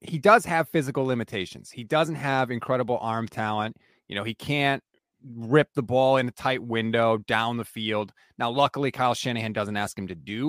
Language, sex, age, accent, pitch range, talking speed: English, male, 30-49, American, 120-155 Hz, 195 wpm